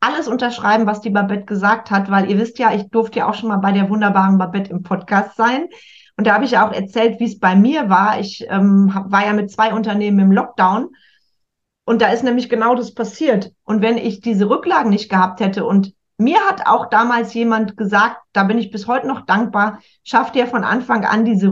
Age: 40-59